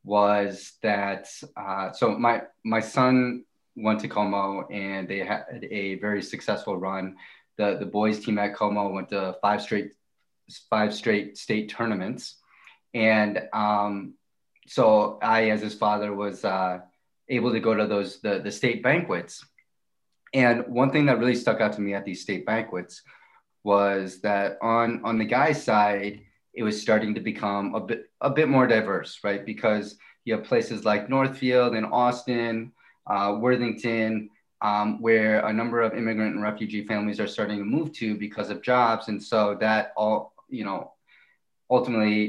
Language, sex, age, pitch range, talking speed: English, male, 20-39, 100-115 Hz, 165 wpm